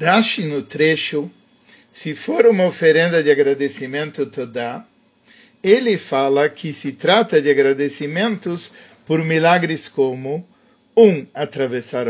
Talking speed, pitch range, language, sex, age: 115 wpm, 140-205 Hz, Portuguese, male, 50-69